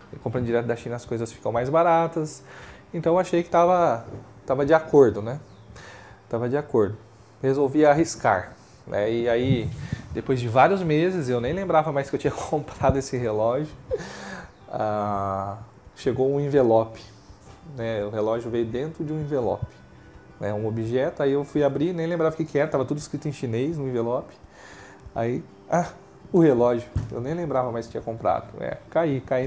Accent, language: Brazilian, Portuguese